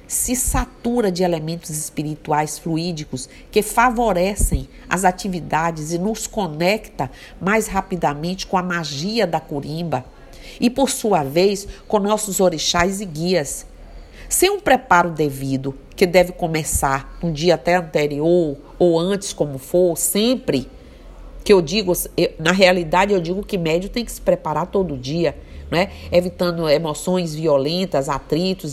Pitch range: 155-195 Hz